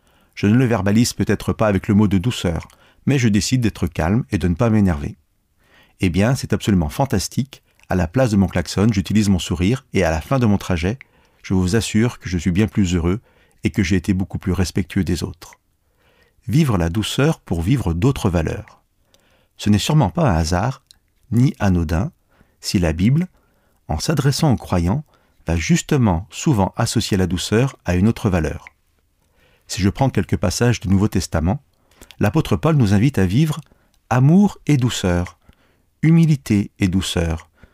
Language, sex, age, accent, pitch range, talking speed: French, male, 40-59, French, 90-120 Hz, 180 wpm